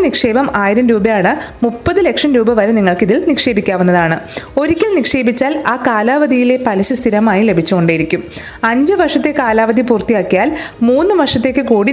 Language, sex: Malayalam, female